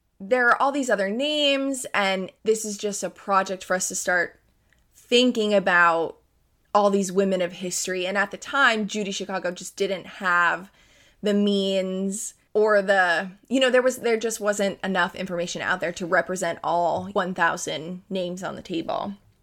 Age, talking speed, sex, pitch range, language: 20-39, 170 wpm, female, 185-210 Hz, English